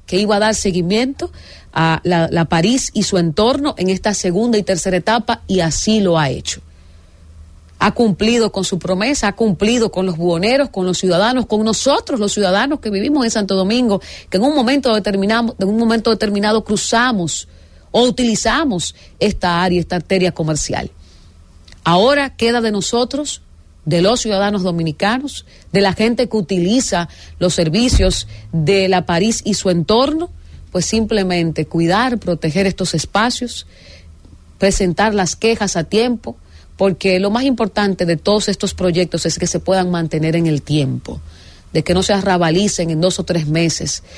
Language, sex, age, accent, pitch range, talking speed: English, female, 40-59, American, 165-215 Hz, 160 wpm